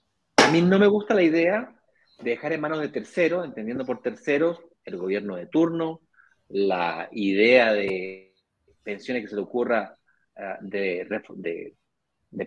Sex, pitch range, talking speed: male, 115-170 Hz, 155 wpm